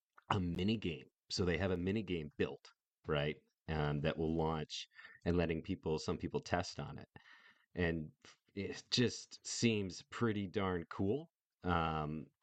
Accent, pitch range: American, 75-90 Hz